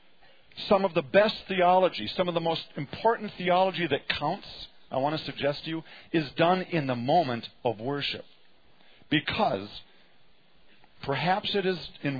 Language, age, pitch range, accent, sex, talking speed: English, 50-69, 130-185 Hz, American, male, 150 wpm